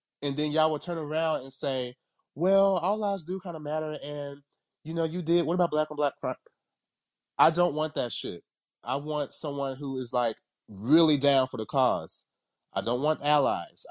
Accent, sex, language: American, male, English